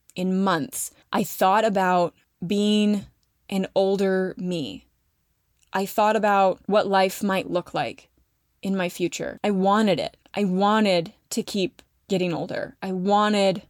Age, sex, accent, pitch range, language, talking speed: 20-39, female, American, 185-215 Hz, English, 135 wpm